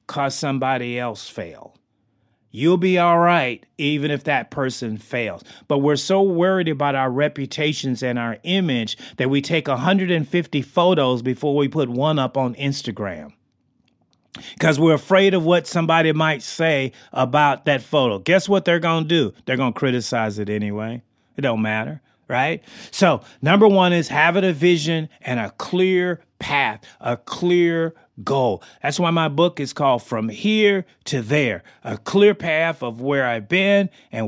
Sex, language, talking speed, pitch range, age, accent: male, English, 165 wpm, 130-175 Hz, 30-49, American